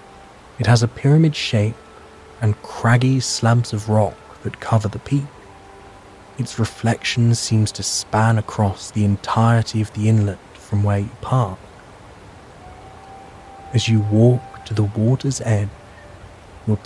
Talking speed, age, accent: 130 wpm, 20-39, British